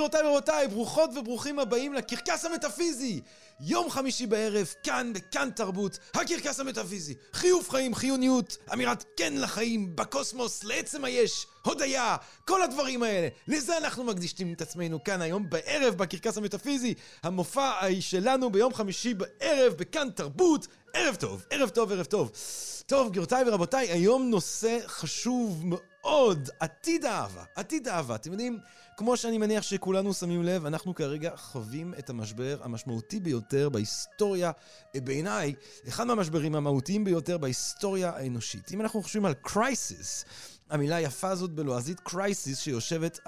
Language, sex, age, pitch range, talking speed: Hebrew, male, 40-59, 155-245 Hz, 130 wpm